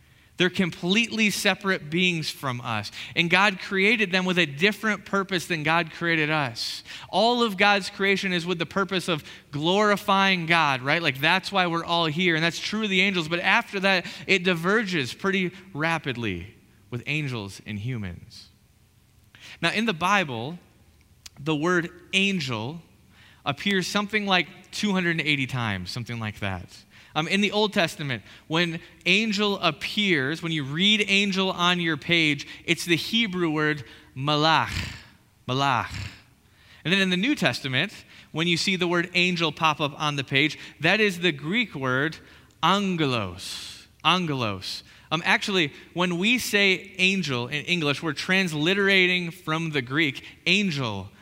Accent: American